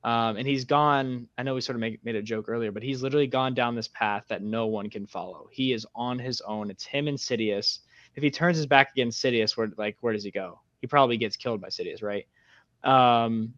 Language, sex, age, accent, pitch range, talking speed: English, male, 10-29, American, 110-140 Hz, 250 wpm